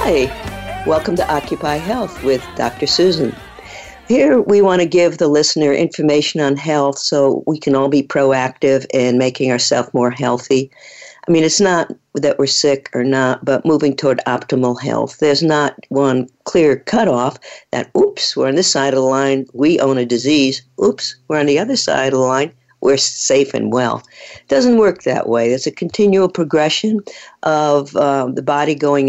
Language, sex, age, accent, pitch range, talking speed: English, female, 50-69, American, 135-175 Hz, 180 wpm